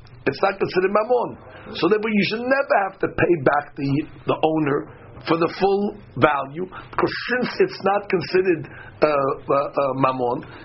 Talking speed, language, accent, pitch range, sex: 165 wpm, English, American, 145-215 Hz, male